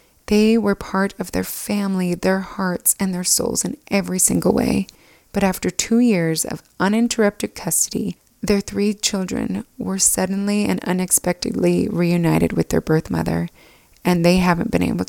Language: English